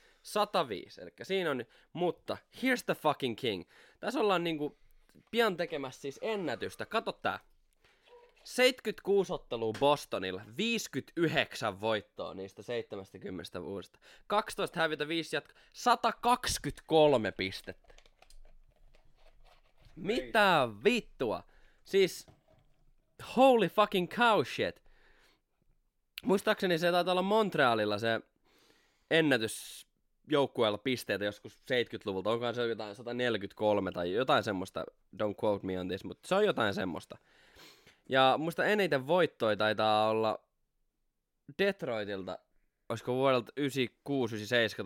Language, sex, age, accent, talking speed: Finnish, male, 20-39, native, 105 wpm